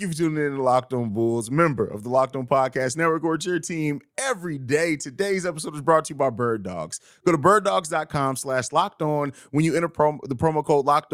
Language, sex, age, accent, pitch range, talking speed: English, male, 30-49, American, 130-175 Hz, 220 wpm